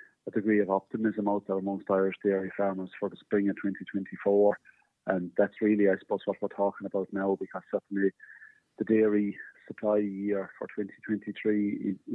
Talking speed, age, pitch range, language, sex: 165 wpm, 30-49, 95-105 Hz, English, male